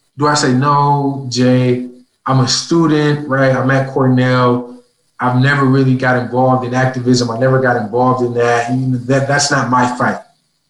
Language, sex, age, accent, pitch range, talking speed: English, male, 20-39, American, 125-140 Hz, 170 wpm